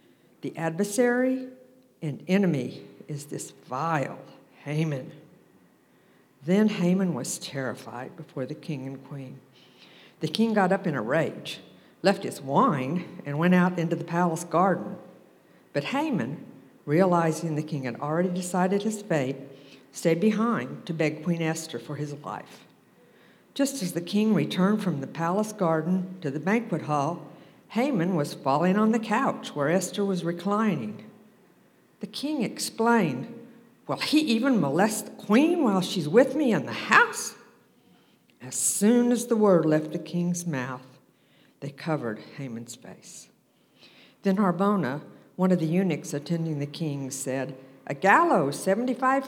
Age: 60-79